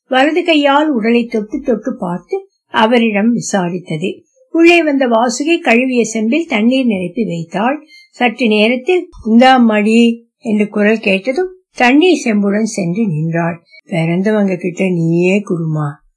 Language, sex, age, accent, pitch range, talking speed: Tamil, female, 60-79, native, 200-270 Hz, 50 wpm